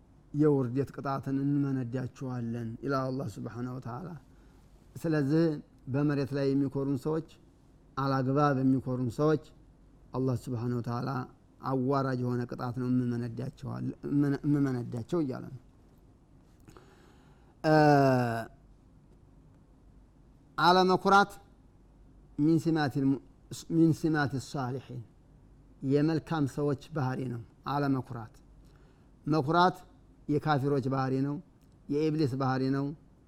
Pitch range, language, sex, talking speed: 130-145 Hz, Amharic, male, 85 wpm